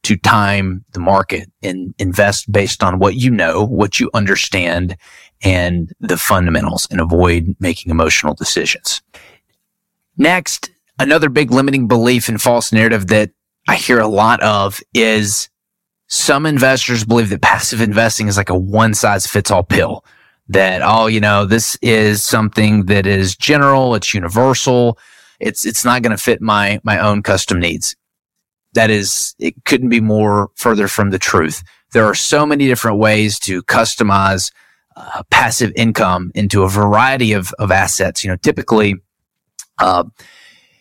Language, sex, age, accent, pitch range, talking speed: English, male, 30-49, American, 95-115 Hz, 155 wpm